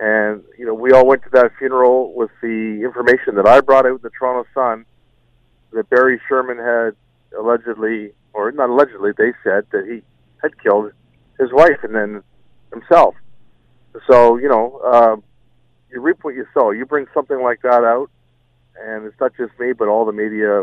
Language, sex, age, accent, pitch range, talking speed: English, male, 50-69, American, 110-135 Hz, 180 wpm